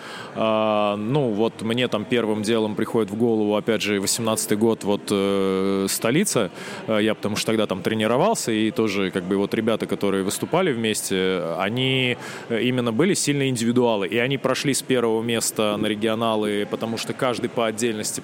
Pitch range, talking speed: 110-140 Hz, 160 wpm